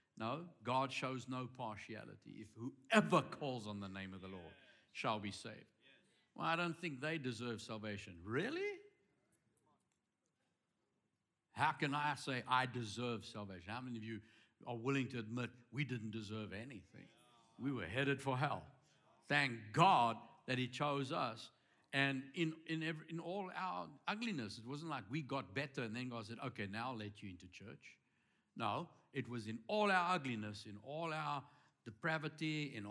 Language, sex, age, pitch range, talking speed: English, male, 60-79, 110-150 Hz, 170 wpm